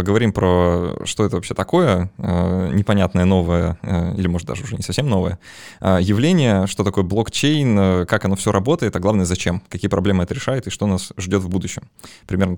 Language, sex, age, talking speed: Russian, male, 20-39, 175 wpm